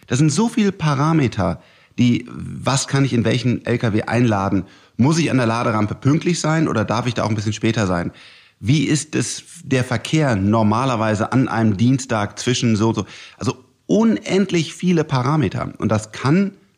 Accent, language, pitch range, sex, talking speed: German, German, 105-140 Hz, male, 170 wpm